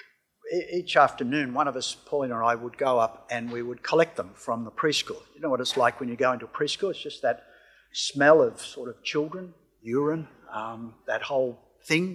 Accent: Australian